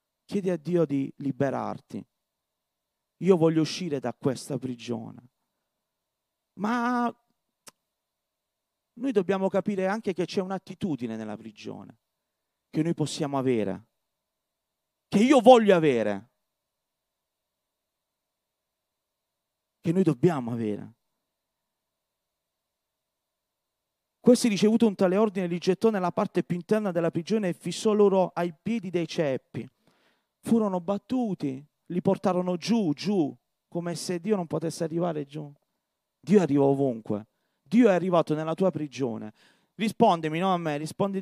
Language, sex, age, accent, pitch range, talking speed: Italian, male, 40-59, native, 145-200 Hz, 115 wpm